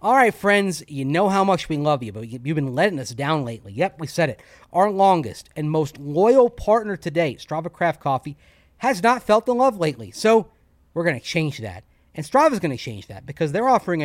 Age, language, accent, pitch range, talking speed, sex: 30-49, English, American, 135-175 Hz, 220 wpm, male